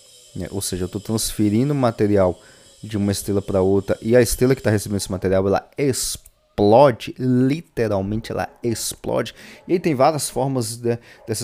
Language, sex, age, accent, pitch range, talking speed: Portuguese, male, 20-39, Brazilian, 105-130 Hz, 155 wpm